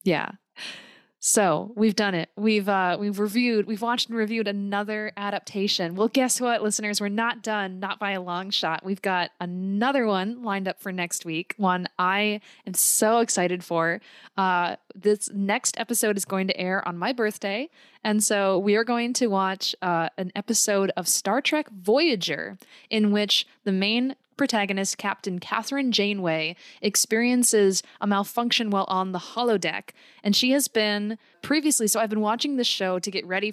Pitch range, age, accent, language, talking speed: 185-225 Hz, 20-39, American, English, 175 wpm